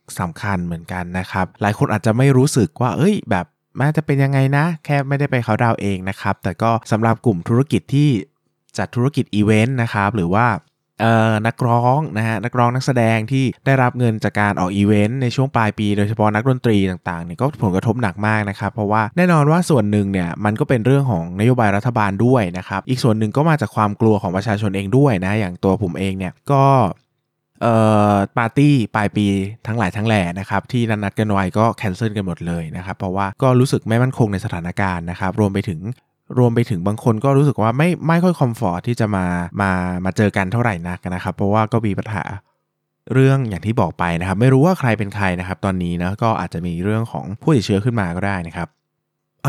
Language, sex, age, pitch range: Thai, male, 20-39, 95-125 Hz